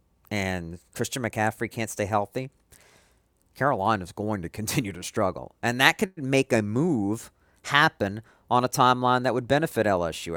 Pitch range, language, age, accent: 90-130 Hz, English, 50-69, American